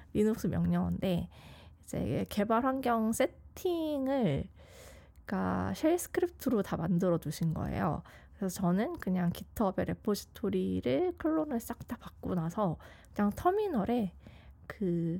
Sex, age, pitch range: female, 20-39, 180-240 Hz